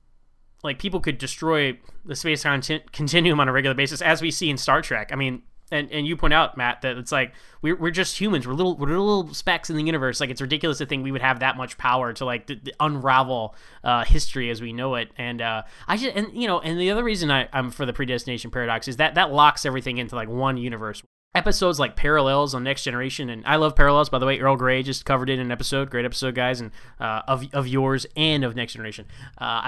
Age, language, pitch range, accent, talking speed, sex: 10-29, English, 130-155 Hz, American, 250 wpm, male